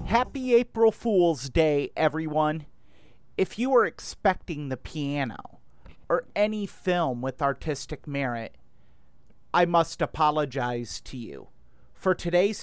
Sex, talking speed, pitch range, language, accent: male, 115 wpm, 135-180 Hz, English, American